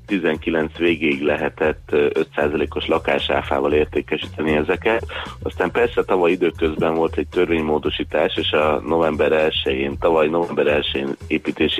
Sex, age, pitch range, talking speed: male, 30-49, 75-90 Hz, 95 wpm